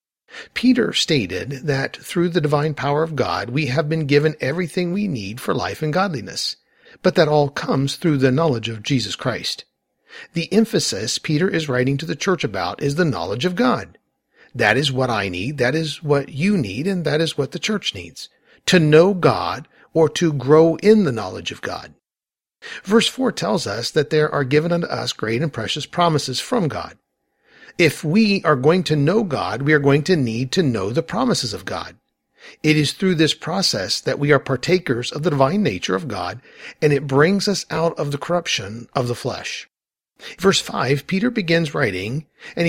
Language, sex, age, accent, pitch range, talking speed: English, male, 50-69, American, 135-175 Hz, 195 wpm